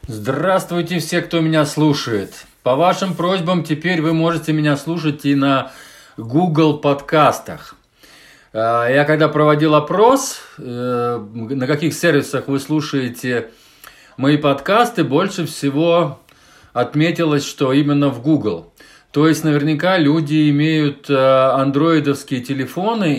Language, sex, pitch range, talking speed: Russian, male, 135-170 Hz, 110 wpm